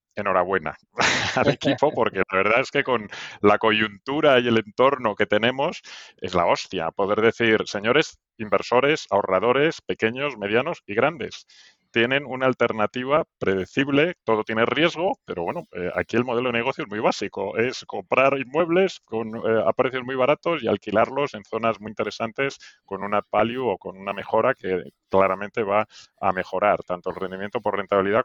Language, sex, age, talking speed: Spanish, male, 30-49, 165 wpm